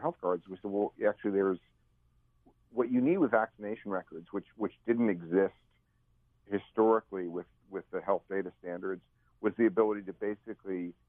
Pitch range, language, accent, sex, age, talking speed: 90-110 Hz, English, American, male, 50-69, 155 wpm